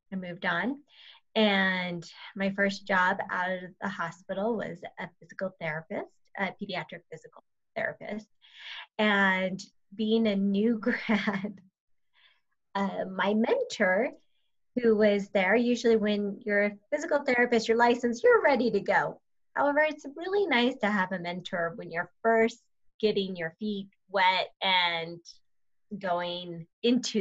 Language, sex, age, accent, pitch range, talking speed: English, female, 20-39, American, 185-230 Hz, 130 wpm